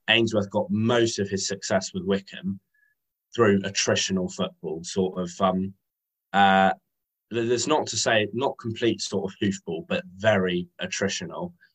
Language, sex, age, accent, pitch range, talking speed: English, male, 20-39, British, 95-110 Hz, 135 wpm